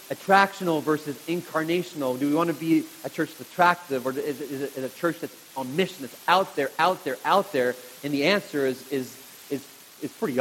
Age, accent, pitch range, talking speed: 30-49, American, 150-195 Hz, 210 wpm